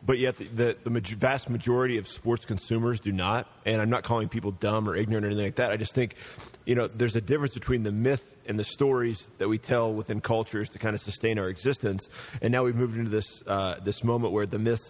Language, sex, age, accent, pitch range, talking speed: English, male, 30-49, American, 100-120 Hz, 245 wpm